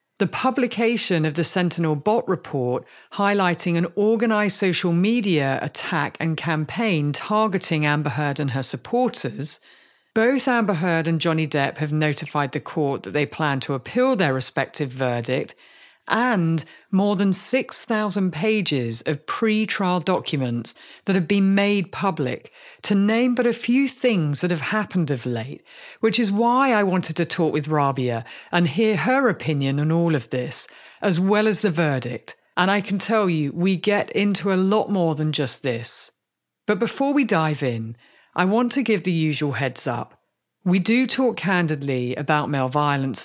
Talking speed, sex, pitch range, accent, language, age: 165 wpm, female, 145-210 Hz, British, English, 50-69